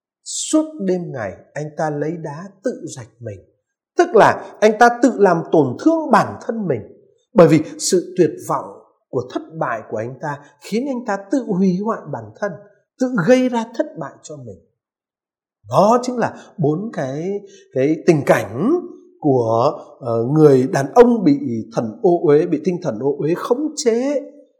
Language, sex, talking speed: Vietnamese, male, 175 wpm